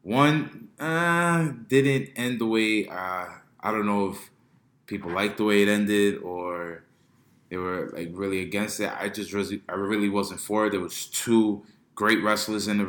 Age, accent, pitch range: 20-39, American, 95-105 Hz